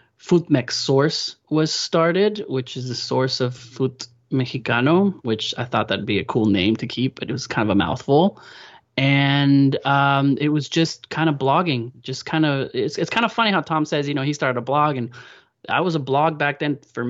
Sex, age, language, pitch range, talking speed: male, 20-39, English, 120-145 Hz, 215 wpm